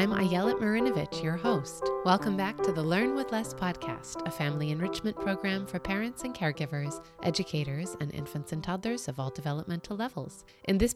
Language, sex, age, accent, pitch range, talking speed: English, female, 30-49, American, 150-195 Hz, 175 wpm